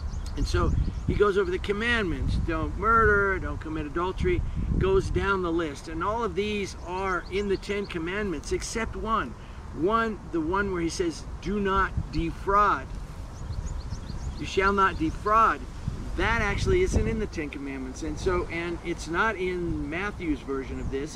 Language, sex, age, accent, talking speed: English, male, 50-69, American, 160 wpm